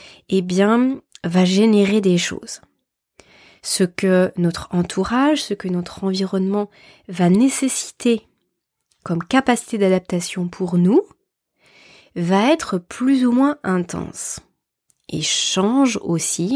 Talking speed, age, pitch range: 110 wpm, 20-39, 180-220 Hz